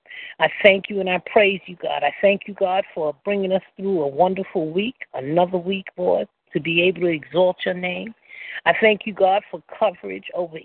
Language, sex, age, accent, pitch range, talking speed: English, female, 50-69, American, 165-200 Hz, 205 wpm